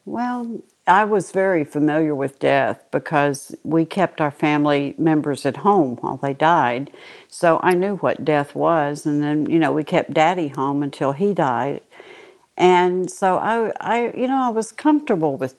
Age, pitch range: 60-79, 155-200 Hz